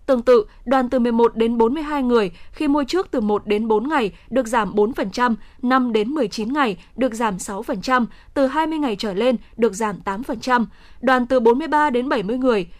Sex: female